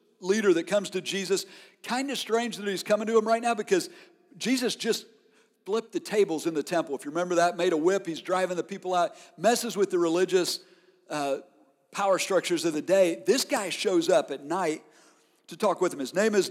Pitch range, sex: 175-230 Hz, male